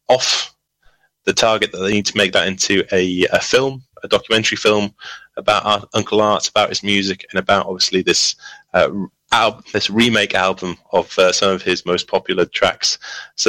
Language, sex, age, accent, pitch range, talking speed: English, male, 30-49, British, 100-155 Hz, 180 wpm